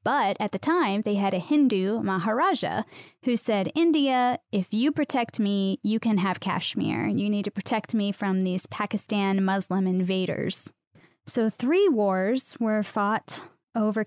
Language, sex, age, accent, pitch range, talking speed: English, female, 10-29, American, 195-240 Hz, 155 wpm